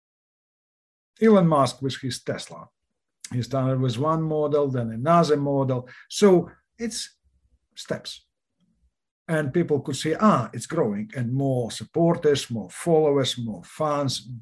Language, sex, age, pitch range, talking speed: English, male, 50-69, 120-150 Hz, 125 wpm